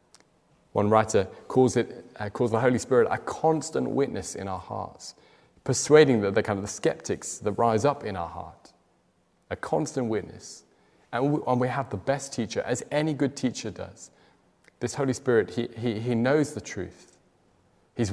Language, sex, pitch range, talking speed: English, male, 100-130 Hz, 175 wpm